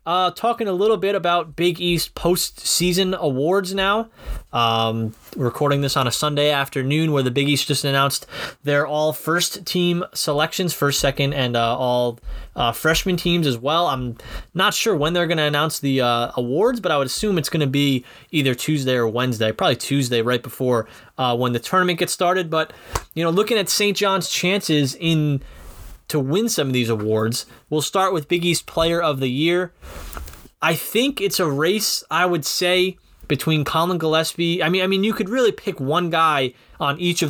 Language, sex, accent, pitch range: English, male, American, 130-175 Hz